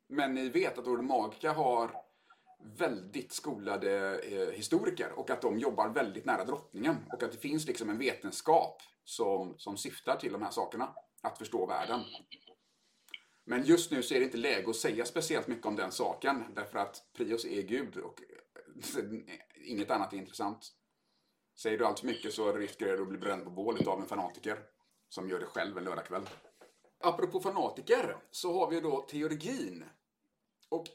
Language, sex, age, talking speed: Swedish, male, 30-49, 170 wpm